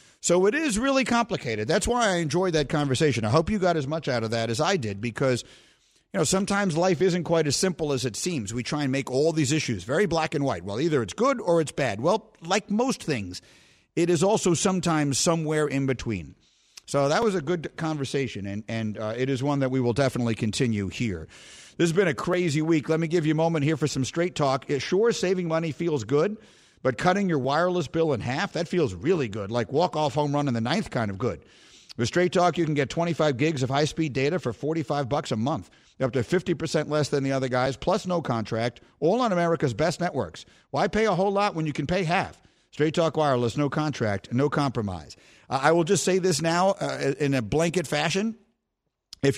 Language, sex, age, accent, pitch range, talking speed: English, male, 50-69, American, 135-180 Hz, 225 wpm